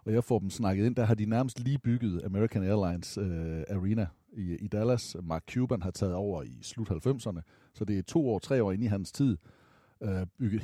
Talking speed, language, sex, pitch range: 225 wpm, Danish, male, 95-120 Hz